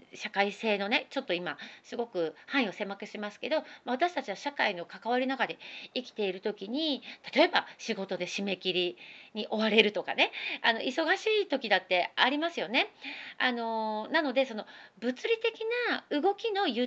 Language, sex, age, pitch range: Japanese, female, 40-59, 210-315 Hz